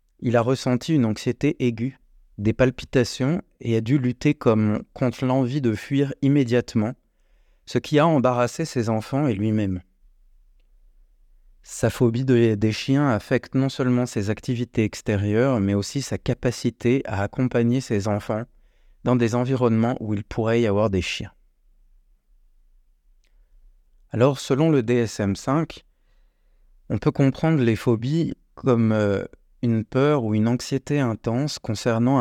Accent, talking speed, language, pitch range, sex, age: French, 135 wpm, French, 105-130 Hz, male, 30-49